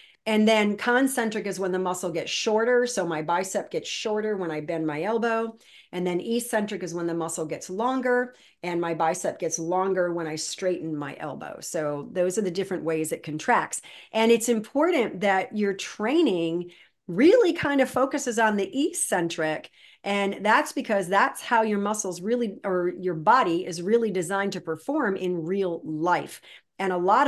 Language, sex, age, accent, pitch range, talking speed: English, female, 40-59, American, 180-235 Hz, 180 wpm